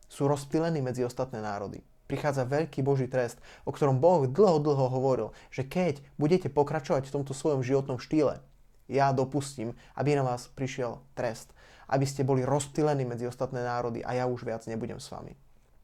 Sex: male